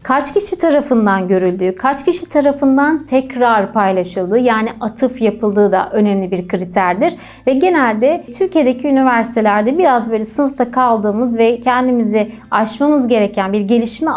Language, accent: Turkish, native